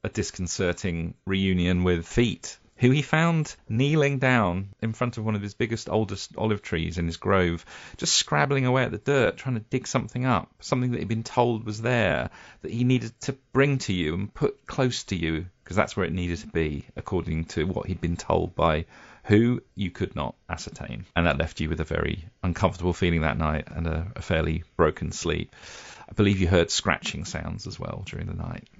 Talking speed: 210 wpm